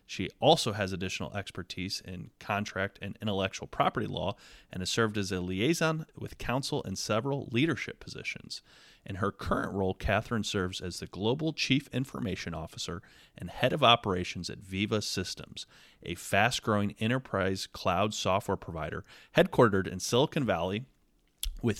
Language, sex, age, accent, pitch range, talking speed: English, male, 30-49, American, 95-120 Hz, 145 wpm